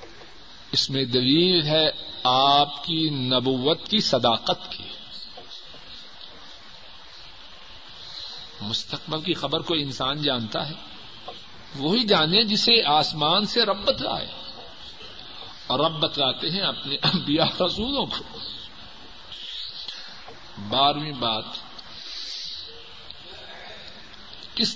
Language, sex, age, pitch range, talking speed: Urdu, male, 50-69, 125-155 Hz, 80 wpm